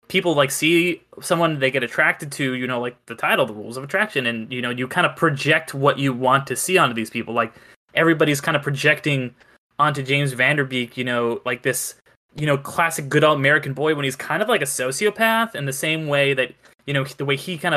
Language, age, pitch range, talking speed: English, 20-39, 130-160 Hz, 235 wpm